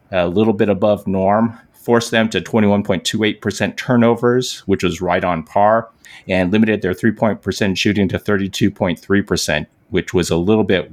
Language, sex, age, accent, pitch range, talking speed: English, male, 30-49, American, 90-110 Hz, 155 wpm